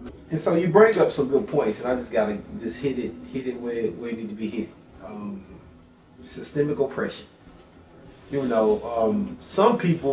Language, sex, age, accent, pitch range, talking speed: English, male, 30-49, American, 110-175 Hz, 190 wpm